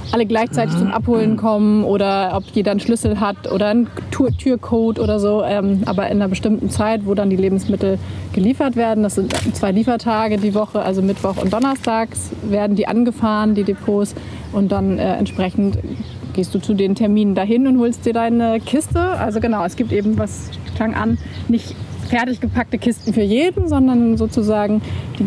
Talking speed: 180 wpm